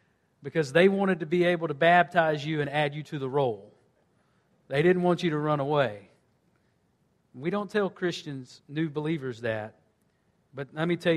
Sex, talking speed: male, 175 wpm